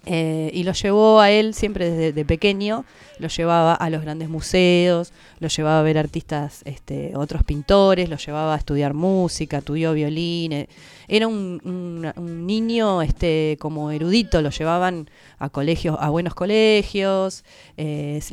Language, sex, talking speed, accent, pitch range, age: Spanish, female, 155 wpm, Argentinian, 160-205 Hz, 20-39